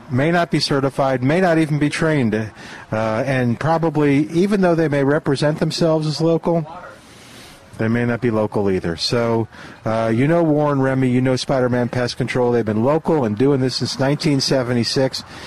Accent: American